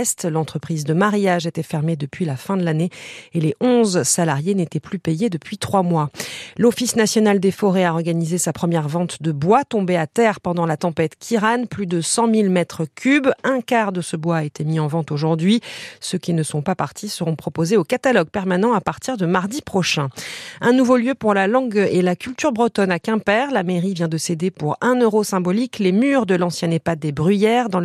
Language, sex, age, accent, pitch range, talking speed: French, female, 40-59, French, 165-210 Hz, 215 wpm